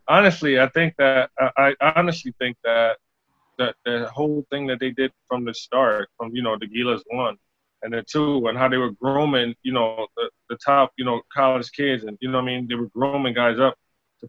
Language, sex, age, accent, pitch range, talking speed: English, male, 20-39, American, 125-155 Hz, 225 wpm